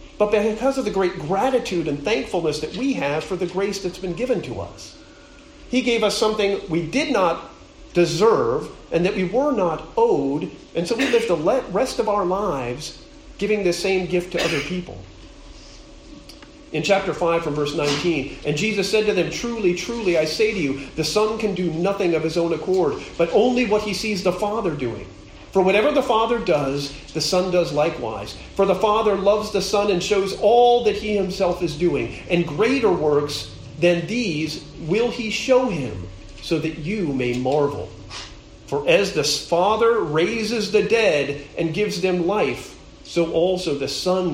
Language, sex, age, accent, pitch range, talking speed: English, male, 40-59, American, 145-210 Hz, 185 wpm